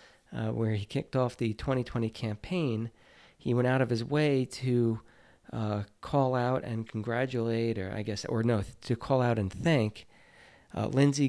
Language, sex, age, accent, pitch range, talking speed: English, male, 40-59, American, 115-140 Hz, 175 wpm